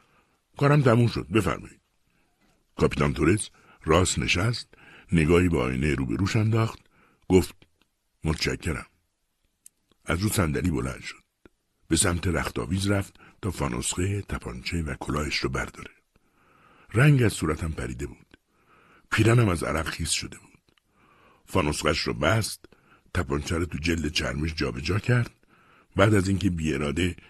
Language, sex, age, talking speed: Persian, male, 60-79, 130 wpm